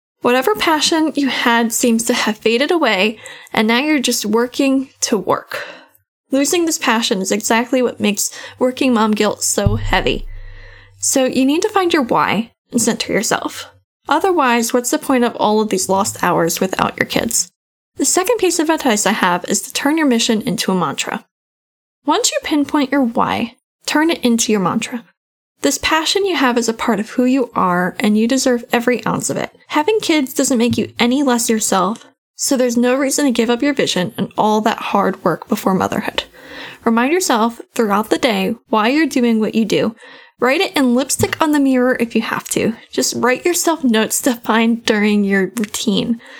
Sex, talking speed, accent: female, 195 wpm, American